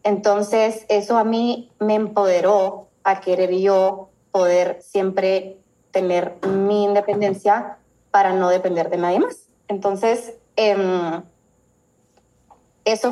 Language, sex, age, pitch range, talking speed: Spanish, female, 20-39, 185-215 Hz, 105 wpm